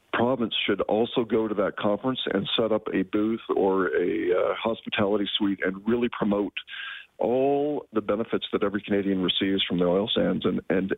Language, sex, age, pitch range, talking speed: English, male, 40-59, 100-125 Hz, 180 wpm